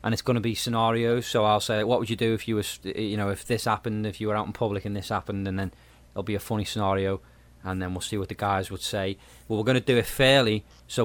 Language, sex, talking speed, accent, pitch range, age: English, male, 295 wpm, British, 100-120 Hz, 20-39